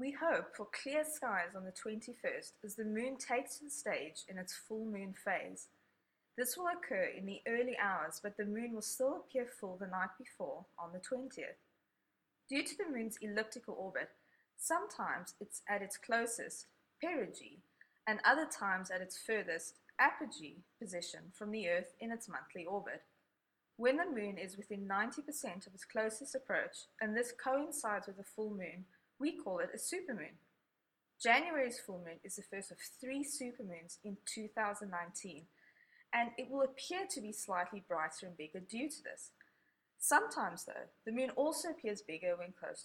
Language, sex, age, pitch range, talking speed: English, female, 20-39, 190-260 Hz, 170 wpm